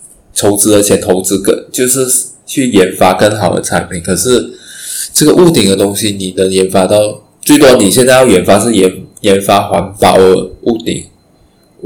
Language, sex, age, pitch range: Chinese, male, 20-39, 95-110 Hz